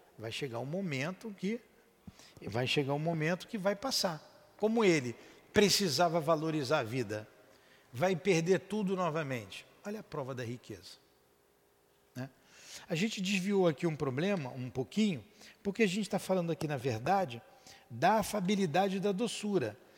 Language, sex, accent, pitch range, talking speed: Portuguese, male, Brazilian, 135-200 Hz, 145 wpm